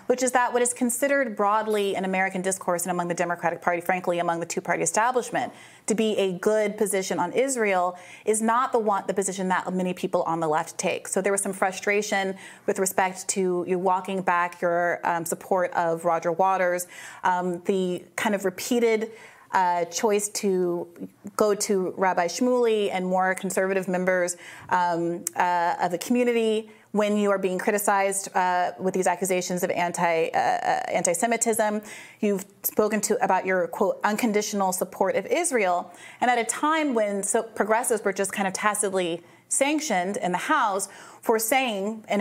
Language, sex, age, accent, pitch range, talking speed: English, female, 30-49, American, 180-220 Hz, 170 wpm